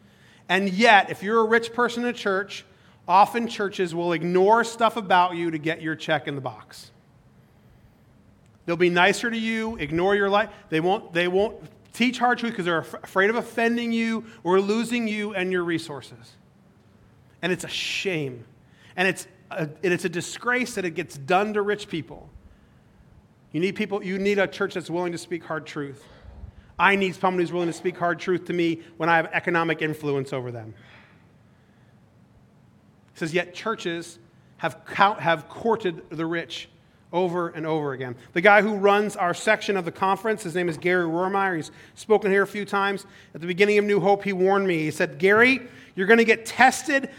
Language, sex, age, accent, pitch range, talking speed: English, male, 40-59, American, 165-215 Hz, 190 wpm